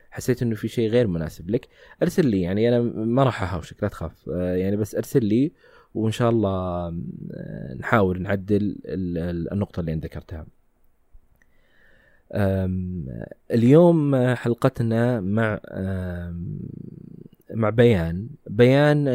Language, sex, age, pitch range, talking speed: Arabic, male, 20-39, 90-115 Hz, 105 wpm